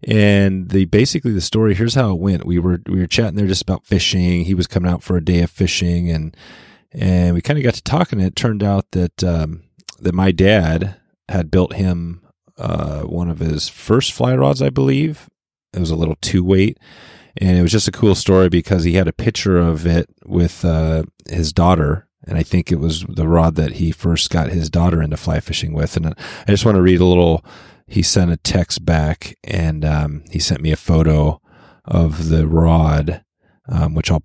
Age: 30-49